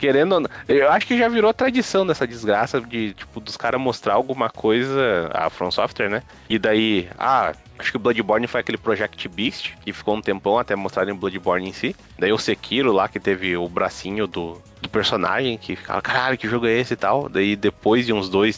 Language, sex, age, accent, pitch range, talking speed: Portuguese, male, 20-39, Brazilian, 95-130 Hz, 215 wpm